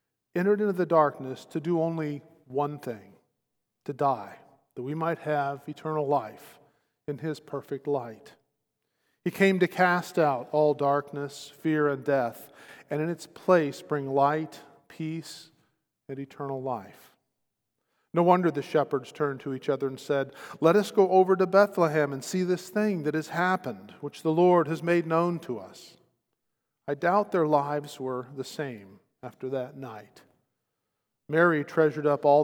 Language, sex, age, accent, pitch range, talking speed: English, male, 50-69, American, 135-160 Hz, 160 wpm